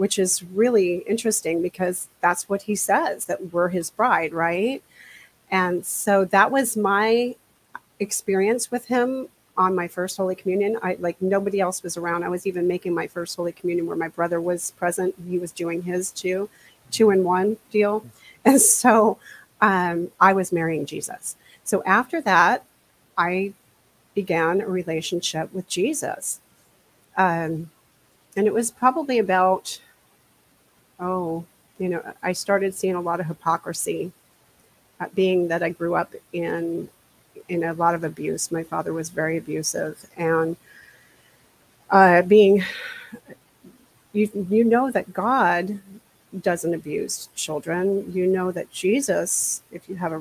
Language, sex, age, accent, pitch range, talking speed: English, female, 40-59, American, 170-200 Hz, 145 wpm